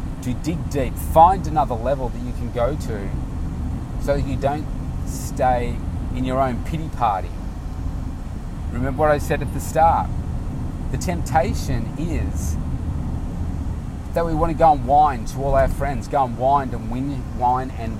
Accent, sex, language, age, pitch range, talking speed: Australian, male, English, 30-49, 80-120 Hz, 155 wpm